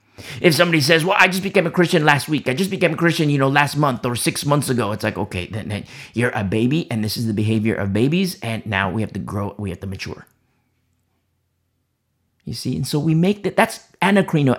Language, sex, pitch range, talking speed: English, male, 120-190 Hz, 240 wpm